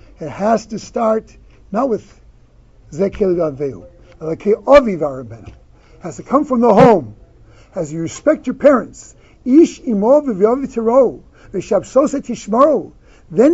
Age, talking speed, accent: 60-79, 135 wpm, American